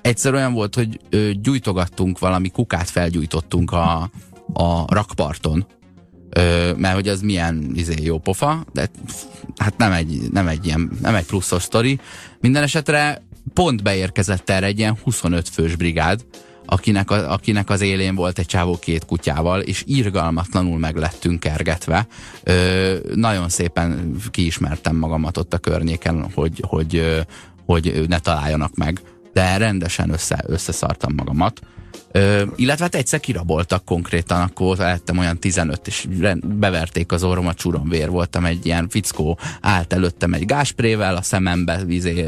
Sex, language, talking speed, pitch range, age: male, Hungarian, 145 wpm, 85-100 Hz, 30-49